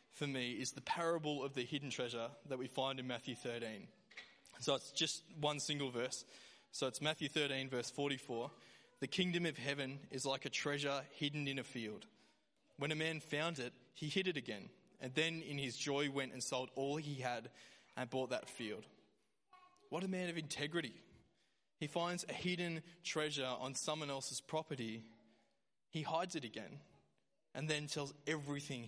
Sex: male